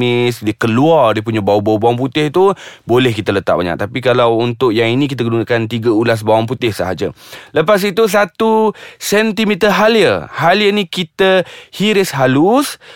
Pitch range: 115-175 Hz